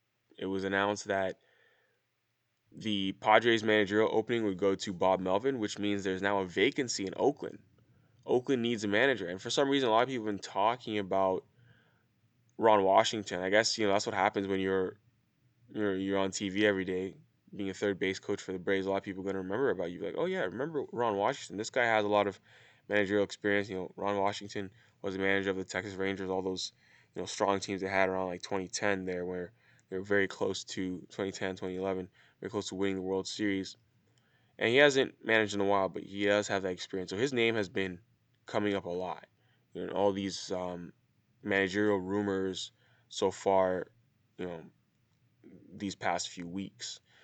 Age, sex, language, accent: 10-29, male, English, American